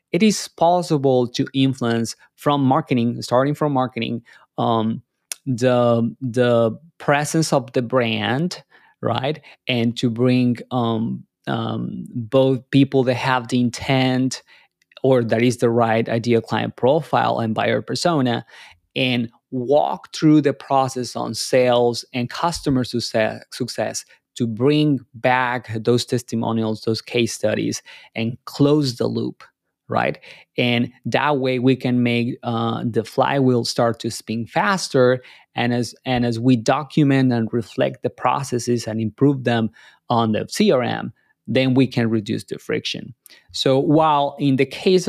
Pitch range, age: 115-135 Hz, 20-39